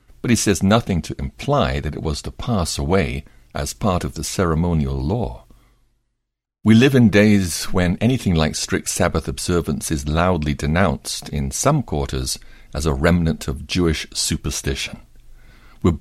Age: 60-79